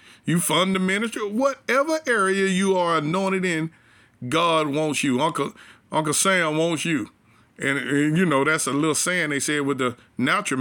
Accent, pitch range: American, 130-195 Hz